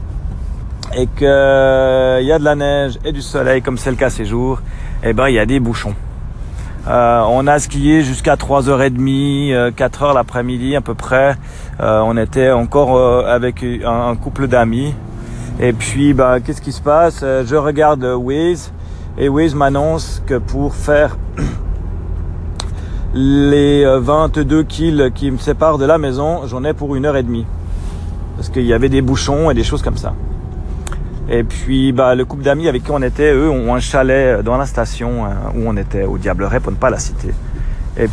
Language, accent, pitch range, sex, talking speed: French, French, 115-145 Hz, male, 180 wpm